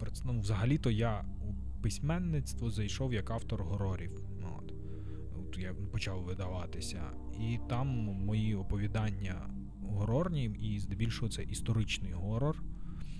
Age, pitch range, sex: 20-39, 95-110 Hz, male